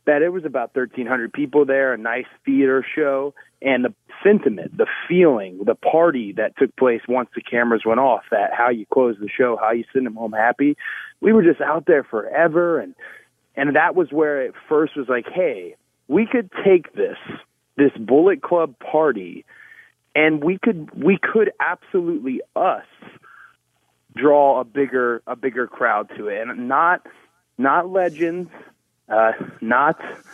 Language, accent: English, American